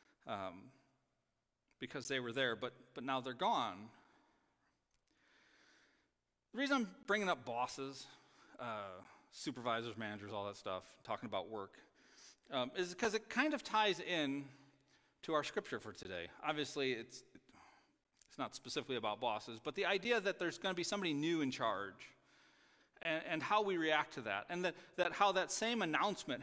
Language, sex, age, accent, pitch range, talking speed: English, male, 40-59, American, 125-180 Hz, 160 wpm